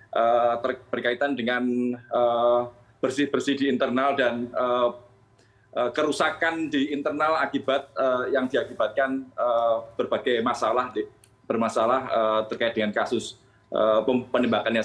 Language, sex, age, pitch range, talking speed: Indonesian, male, 20-39, 115-135 Hz, 75 wpm